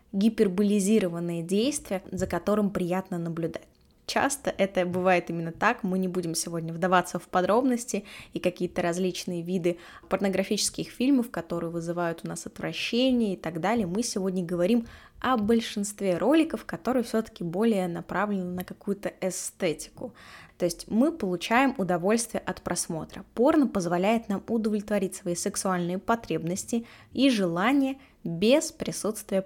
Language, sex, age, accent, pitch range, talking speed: Russian, female, 20-39, native, 175-225 Hz, 130 wpm